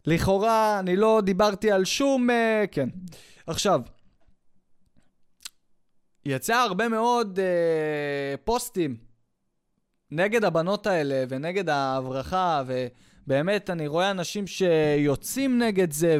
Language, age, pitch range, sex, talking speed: Hebrew, 20-39, 185-265 Hz, male, 95 wpm